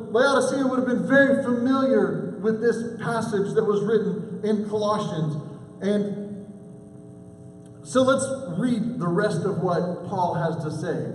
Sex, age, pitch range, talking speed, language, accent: male, 40-59, 150-230 Hz, 140 wpm, English, American